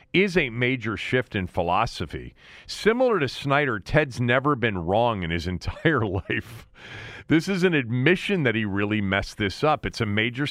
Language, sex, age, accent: English, male, 40-59, American